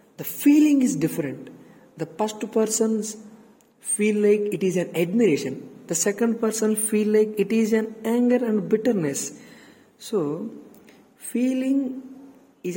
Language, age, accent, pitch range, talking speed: Telugu, 50-69, native, 160-225 Hz, 130 wpm